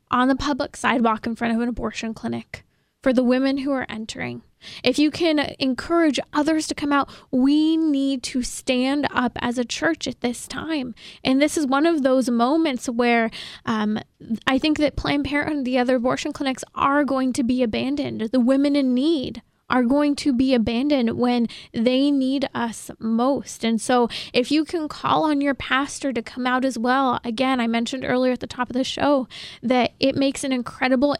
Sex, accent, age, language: female, American, 20-39, English